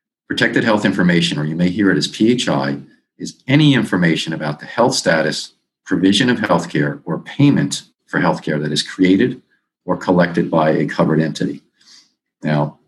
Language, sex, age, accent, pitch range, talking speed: English, male, 50-69, American, 75-90 Hz, 170 wpm